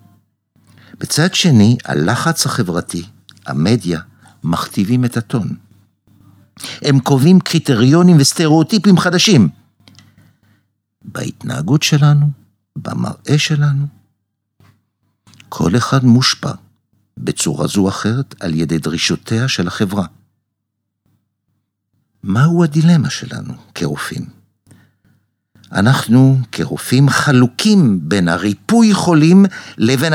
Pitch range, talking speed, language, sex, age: 100-150 Hz, 80 wpm, Hebrew, male, 60-79